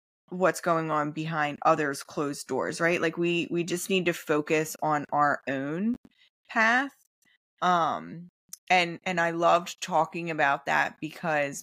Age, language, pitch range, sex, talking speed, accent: 20-39, English, 155-180 Hz, female, 145 wpm, American